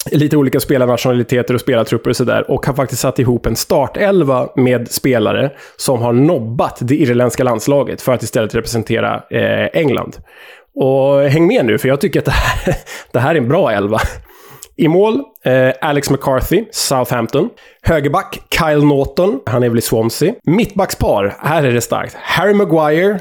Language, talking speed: Swedish, 170 wpm